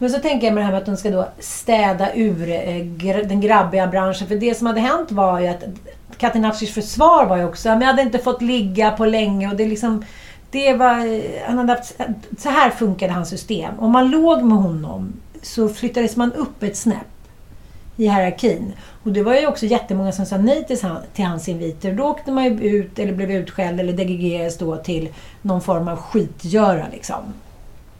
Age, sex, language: 40-59, female, Swedish